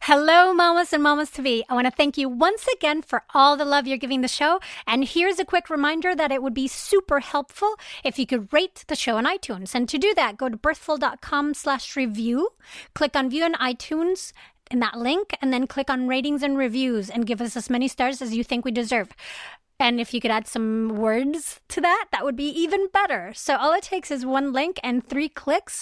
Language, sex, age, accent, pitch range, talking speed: English, female, 30-49, American, 250-315 Hz, 230 wpm